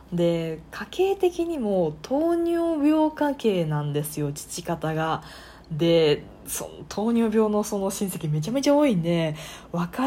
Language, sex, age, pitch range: Japanese, female, 20-39, 155-260 Hz